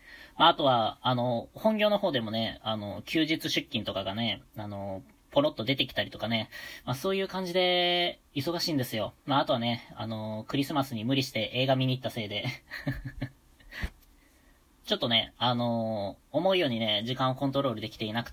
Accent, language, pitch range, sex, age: native, Japanese, 115-155 Hz, female, 20-39